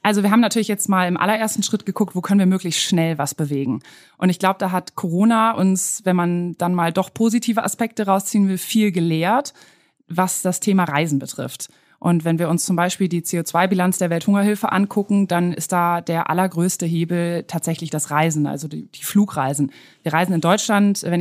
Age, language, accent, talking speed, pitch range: 20-39, German, German, 195 wpm, 165-200 Hz